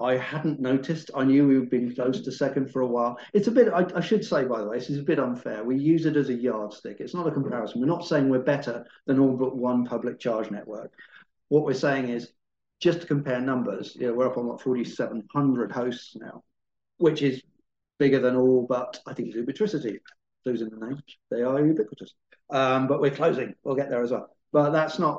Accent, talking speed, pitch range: British, 230 wpm, 120-145 Hz